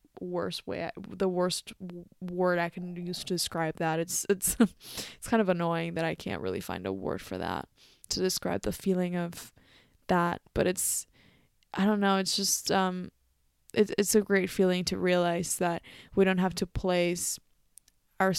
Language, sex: English, female